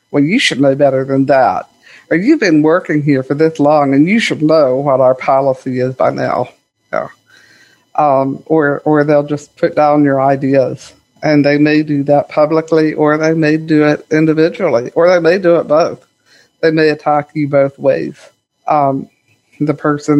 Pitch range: 140-160 Hz